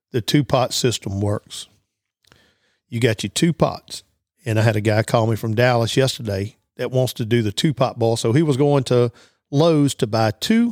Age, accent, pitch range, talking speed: 50-69, American, 110-140 Hz, 205 wpm